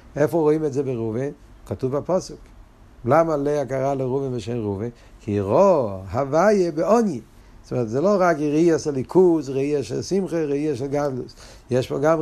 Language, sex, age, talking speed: Hebrew, male, 60-79, 160 wpm